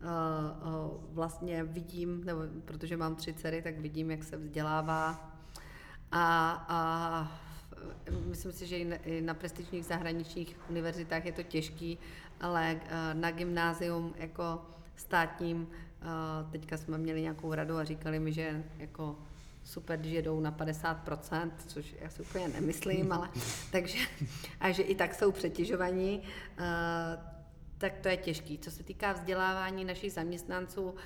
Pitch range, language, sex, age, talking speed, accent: 160-175 Hz, Czech, female, 40-59, 130 wpm, native